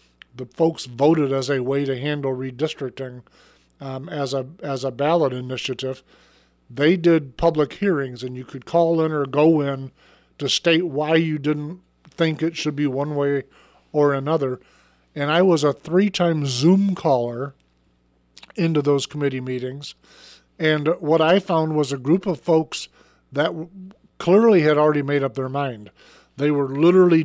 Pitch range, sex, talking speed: 140-170 Hz, male, 155 wpm